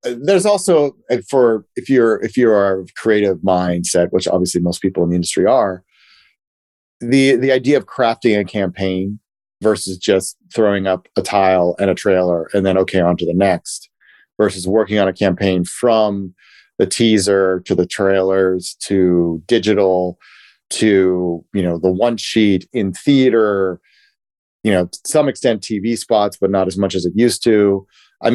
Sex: male